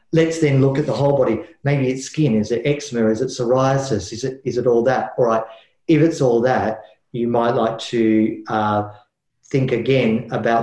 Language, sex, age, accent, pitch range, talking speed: English, male, 40-59, Australian, 110-130 Hz, 205 wpm